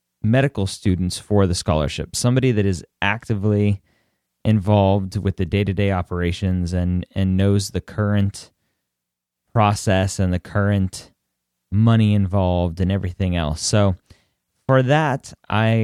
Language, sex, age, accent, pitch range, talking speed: English, male, 30-49, American, 95-110 Hz, 120 wpm